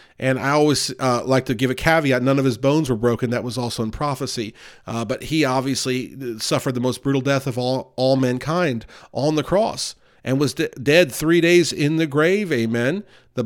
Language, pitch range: English, 120-150 Hz